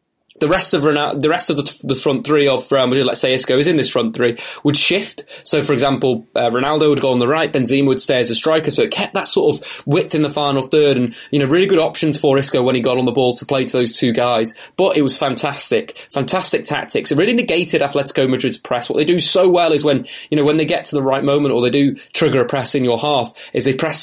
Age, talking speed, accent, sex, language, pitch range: 20-39, 275 wpm, British, male, English, 135-165 Hz